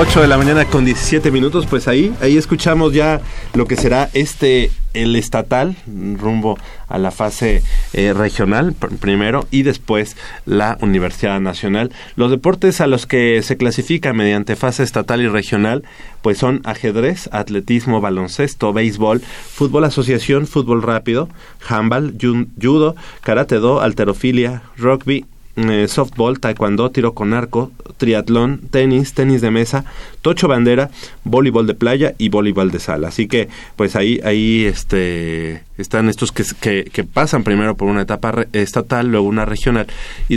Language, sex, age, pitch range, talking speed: Spanish, male, 30-49, 105-130 Hz, 145 wpm